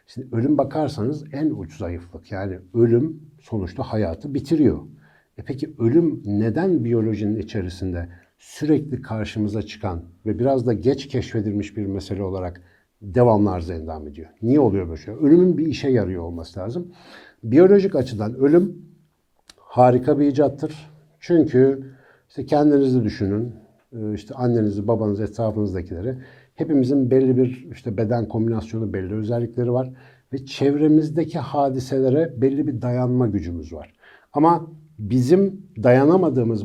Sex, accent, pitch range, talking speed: male, native, 105-145 Hz, 120 wpm